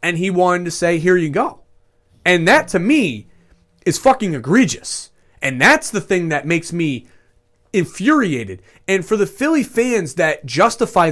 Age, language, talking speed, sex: 30-49, English, 160 wpm, male